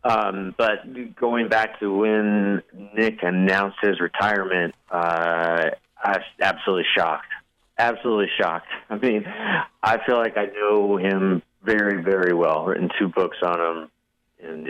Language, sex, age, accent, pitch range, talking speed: English, male, 40-59, American, 85-100 Hz, 145 wpm